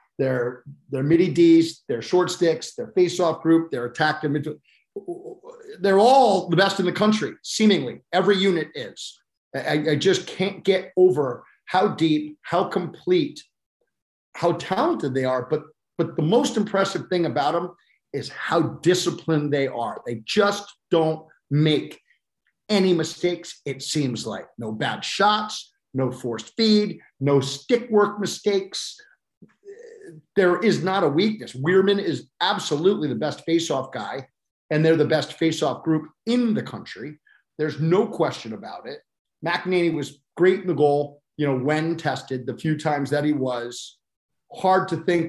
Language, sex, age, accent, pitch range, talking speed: English, male, 50-69, American, 140-190 Hz, 150 wpm